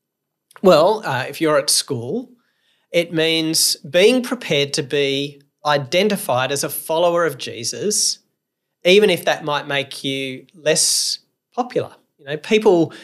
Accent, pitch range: Australian, 135-175 Hz